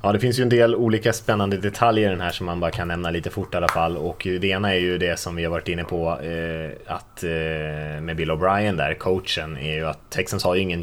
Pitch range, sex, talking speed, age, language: 80-100 Hz, male, 260 wpm, 20-39, Swedish